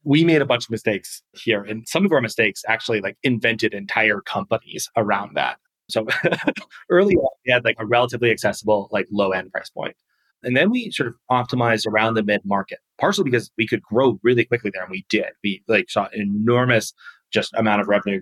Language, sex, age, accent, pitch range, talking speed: English, male, 30-49, American, 105-125 Hz, 205 wpm